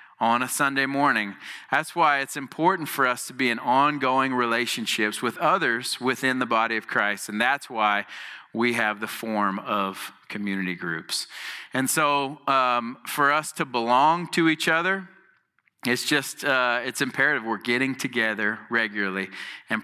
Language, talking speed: English, 155 wpm